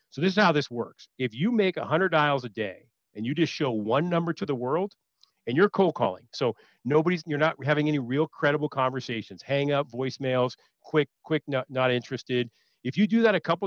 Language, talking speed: English, 215 wpm